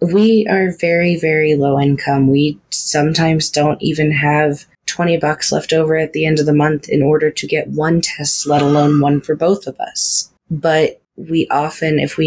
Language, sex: English, female